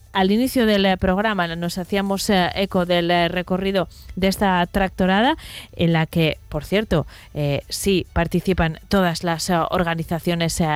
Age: 30-49